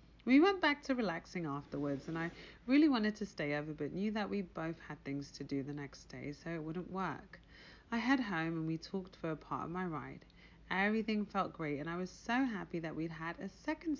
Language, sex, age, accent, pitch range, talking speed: English, female, 40-59, British, 155-245 Hz, 230 wpm